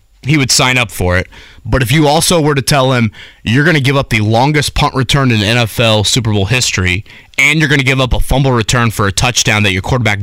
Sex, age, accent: male, 20-39, American